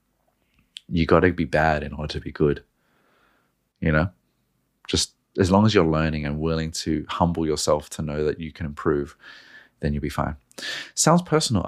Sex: male